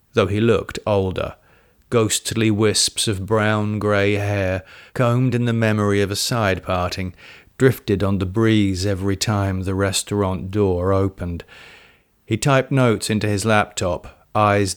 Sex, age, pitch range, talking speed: male, 40-59, 95-110 Hz, 140 wpm